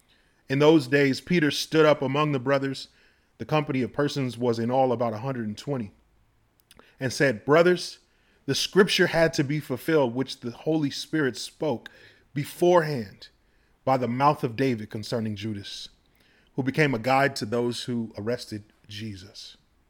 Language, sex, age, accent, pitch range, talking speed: English, male, 30-49, American, 120-155 Hz, 150 wpm